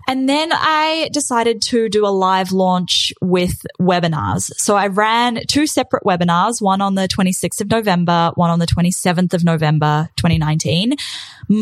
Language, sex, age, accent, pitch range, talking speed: English, female, 10-29, Australian, 175-235 Hz, 155 wpm